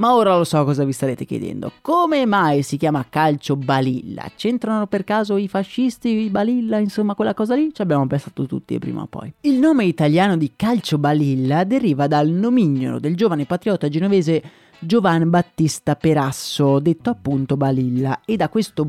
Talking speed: 170 wpm